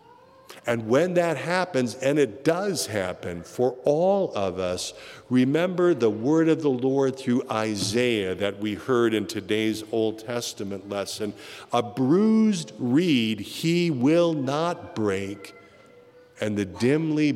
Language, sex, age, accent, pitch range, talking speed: English, male, 50-69, American, 105-145 Hz, 130 wpm